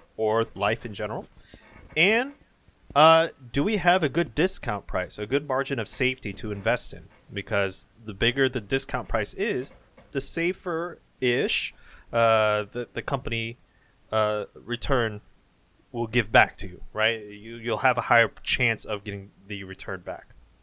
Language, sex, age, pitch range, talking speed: English, male, 30-49, 105-120 Hz, 155 wpm